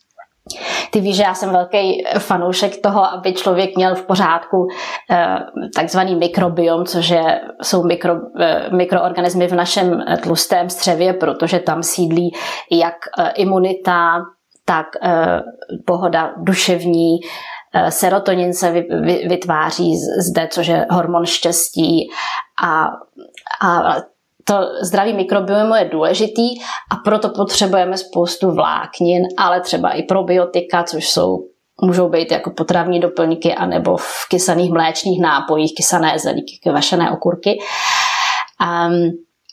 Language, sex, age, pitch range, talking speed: Czech, female, 20-39, 170-195 Hz, 125 wpm